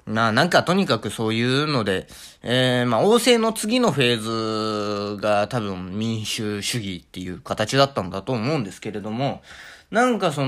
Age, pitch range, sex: 20-39, 110-175 Hz, male